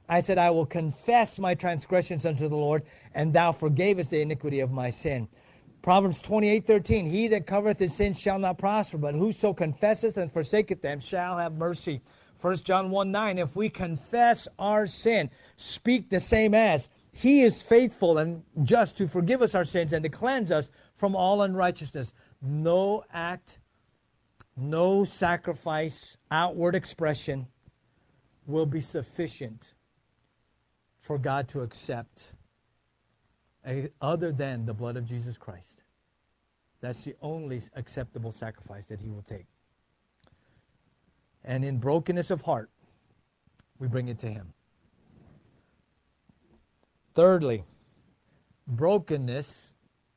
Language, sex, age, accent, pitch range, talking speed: English, male, 50-69, American, 125-185 Hz, 130 wpm